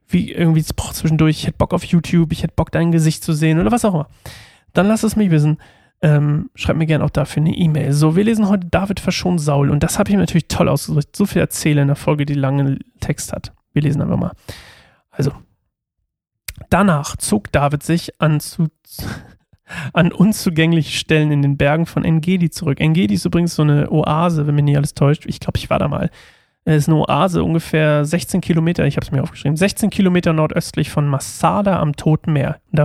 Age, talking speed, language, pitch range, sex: 30-49, 210 wpm, German, 145-175 Hz, male